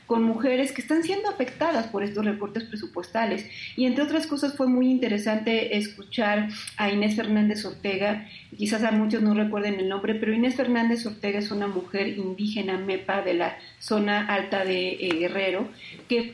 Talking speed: 170 wpm